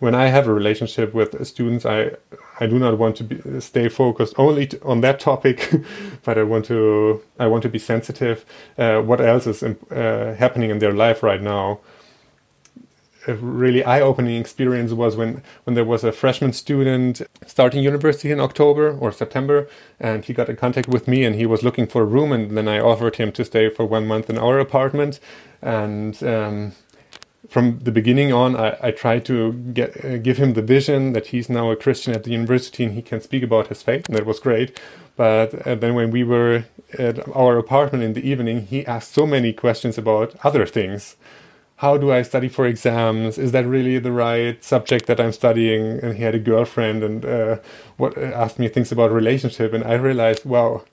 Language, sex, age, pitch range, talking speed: English, male, 30-49, 110-130 Hz, 205 wpm